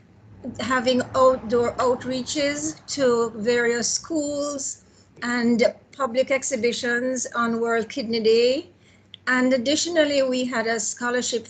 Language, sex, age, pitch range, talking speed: English, female, 50-69, 220-260 Hz, 100 wpm